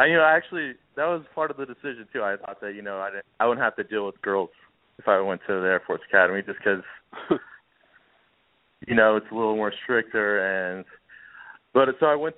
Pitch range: 95-115 Hz